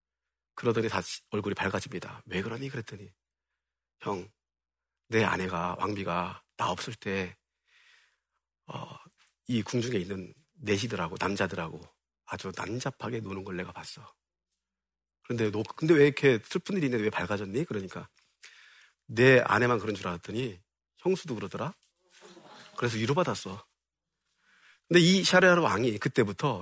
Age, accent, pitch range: 40-59, native, 95-145 Hz